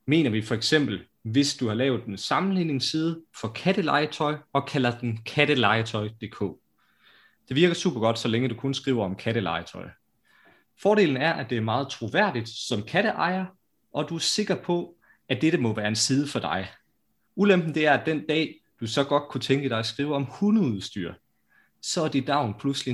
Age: 30-49